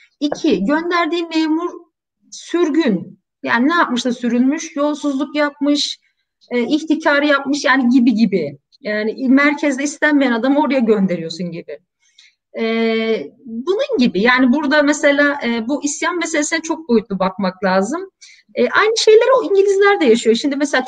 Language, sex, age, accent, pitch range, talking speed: Turkish, female, 40-59, native, 225-300 Hz, 130 wpm